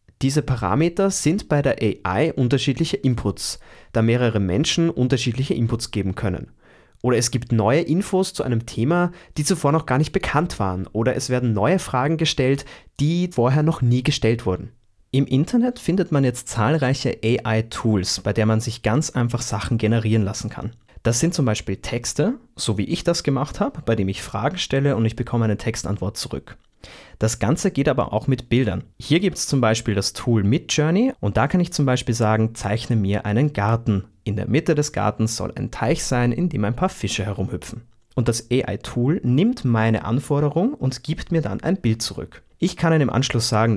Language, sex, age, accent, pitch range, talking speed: German, male, 30-49, German, 110-150 Hz, 195 wpm